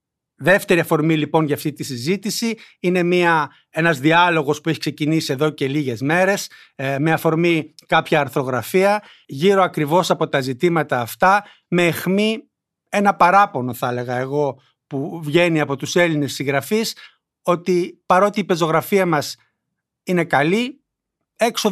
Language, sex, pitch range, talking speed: Greek, male, 150-190 Hz, 135 wpm